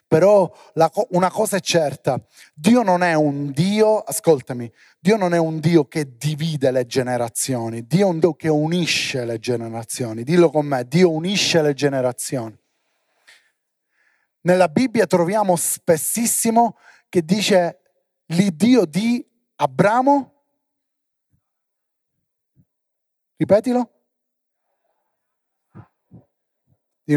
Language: Italian